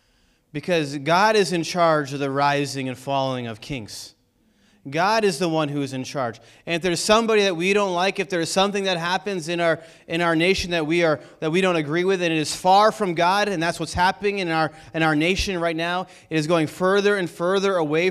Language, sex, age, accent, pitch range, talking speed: English, male, 30-49, American, 170-245 Hz, 230 wpm